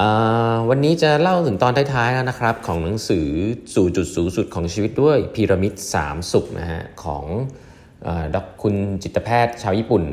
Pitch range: 90-115 Hz